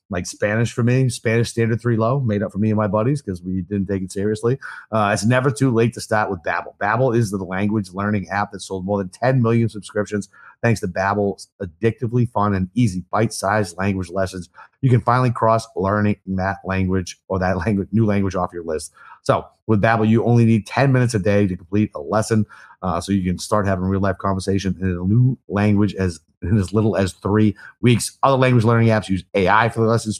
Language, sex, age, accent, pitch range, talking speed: English, male, 30-49, American, 95-115 Hz, 220 wpm